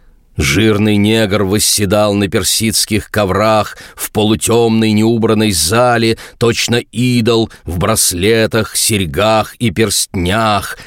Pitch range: 95-120 Hz